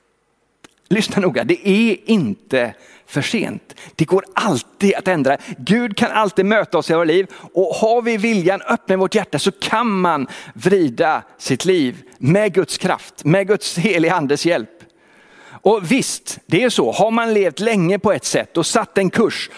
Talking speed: 175 wpm